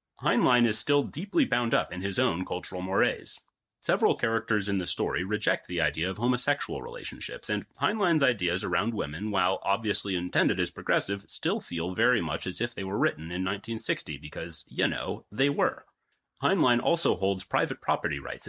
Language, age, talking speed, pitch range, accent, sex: English, 30-49, 175 wpm, 90-120 Hz, American, male